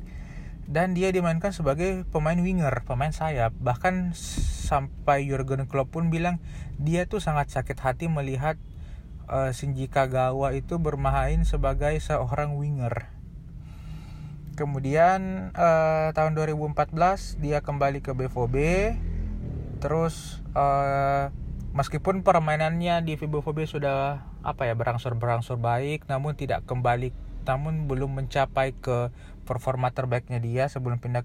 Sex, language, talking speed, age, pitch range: male, Indonesian, 115 wpm, 20-39, 120-150 Hz